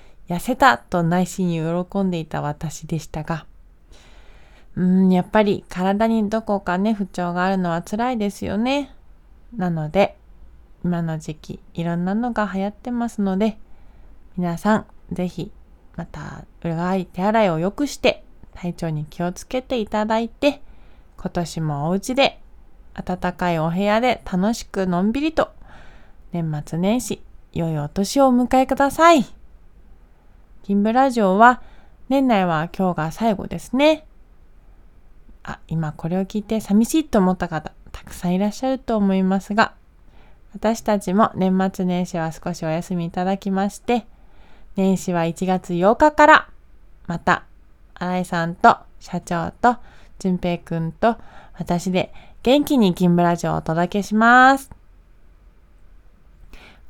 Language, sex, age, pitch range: Japanese, female, 20-39, 165-220 Hz